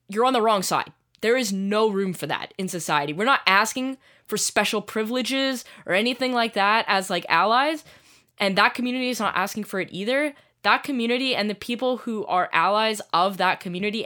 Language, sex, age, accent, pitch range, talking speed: English, female, 10-29, American, 180-235 Hz, 195 wpm